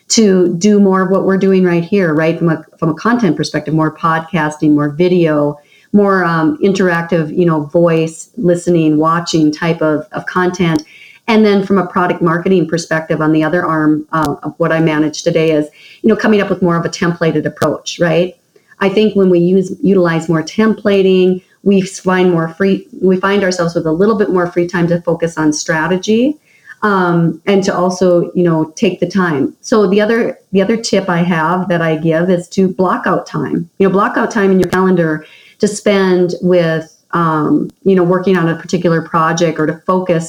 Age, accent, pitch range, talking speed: 40-59, American, 160-195 Hz, 200 wpm